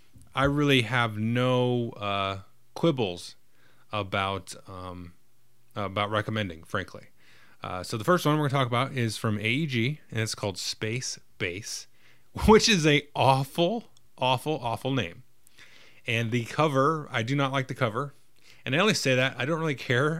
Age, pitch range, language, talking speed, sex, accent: 30-49, 105-135 Hz, English, 155 wpm, male, American